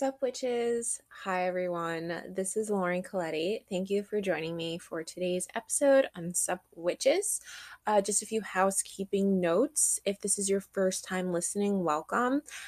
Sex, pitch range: female, 165-205 Hz